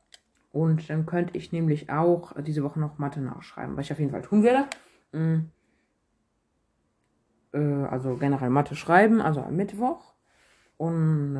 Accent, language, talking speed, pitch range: German, German, 135 wpm, 140-170 Hz